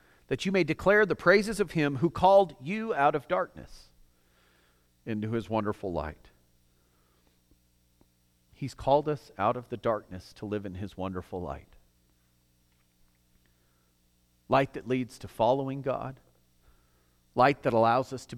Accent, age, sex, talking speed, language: American, 40-59, male, 135 wpm, English